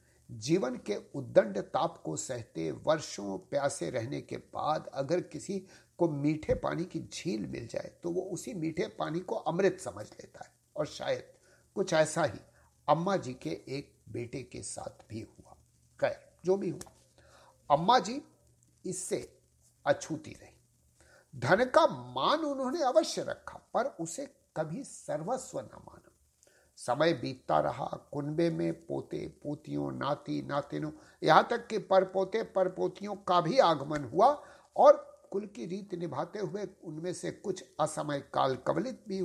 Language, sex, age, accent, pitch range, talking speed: English, male, 60-79, Indian, 145-195 Hz, 145 wpm